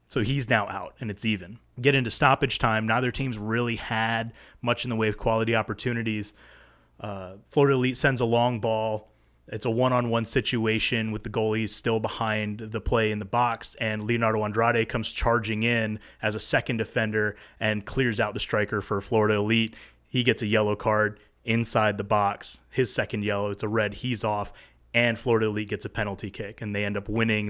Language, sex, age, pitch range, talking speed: English, male, 30-49, 105-120 Hz, 195 wpm